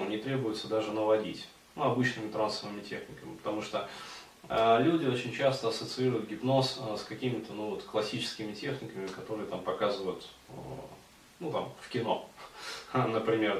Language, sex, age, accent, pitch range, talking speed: Russian, male, 20-39, native, 95-120 Hz, 135 wpm